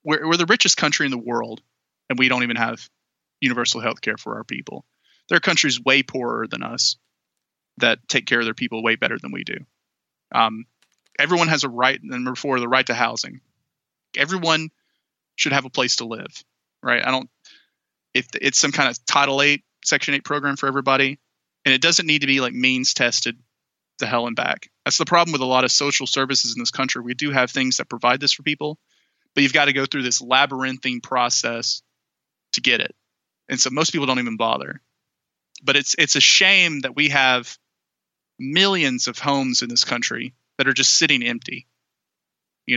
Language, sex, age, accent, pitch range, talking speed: English, male, 20-39, American, 125-145 Hz, 200 wpm